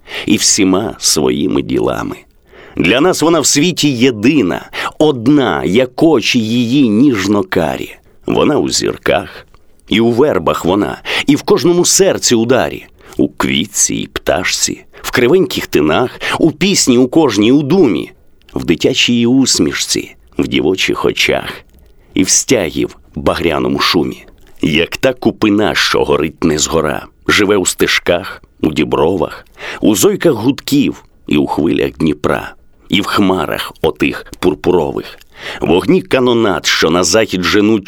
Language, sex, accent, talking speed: Ukrainian, male, native, 130 wpm